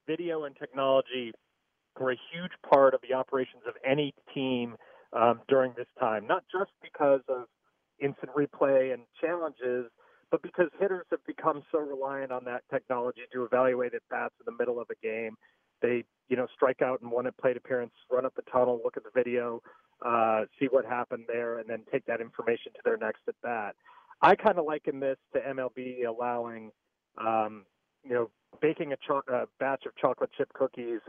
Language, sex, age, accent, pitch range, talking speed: English, male, 30-49, American, 120-170 Hz, 180 wpm